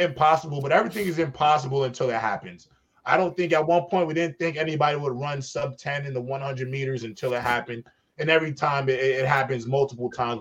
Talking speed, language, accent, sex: 215 wpm, English, American, male